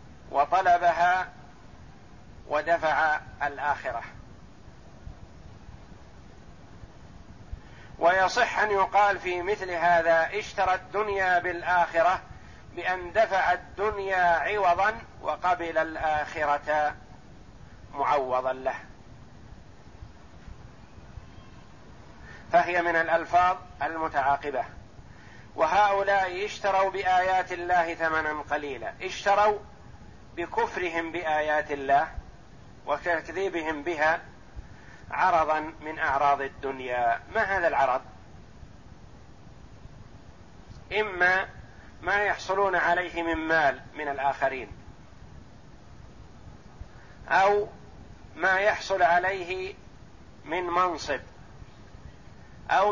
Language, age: Arabic, 50-69